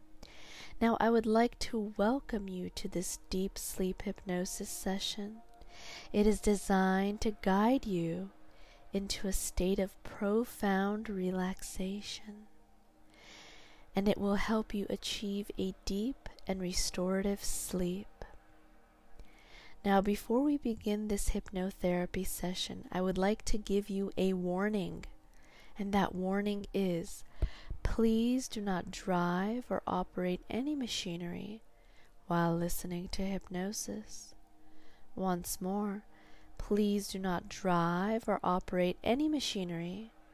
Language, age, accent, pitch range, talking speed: English, 20-39, American, 180-205 Hz, 115 wpm